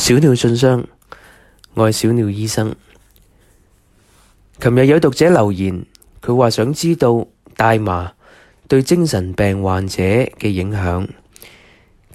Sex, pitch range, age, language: male, 100-130 Hz, 20-39, Chinese